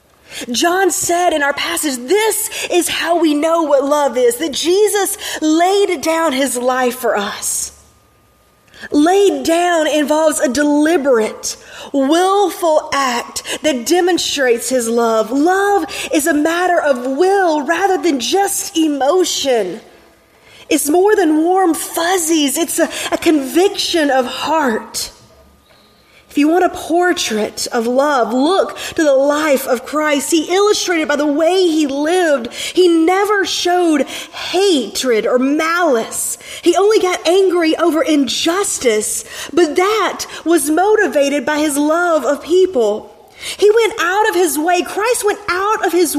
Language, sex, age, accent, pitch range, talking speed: English, female, 30-49, American, 285-360 Hz, 135 wpm